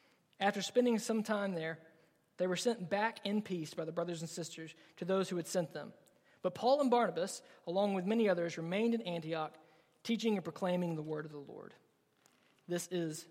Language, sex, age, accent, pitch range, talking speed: English, male, 20-39, American, 175-230 Hz, 195 wpm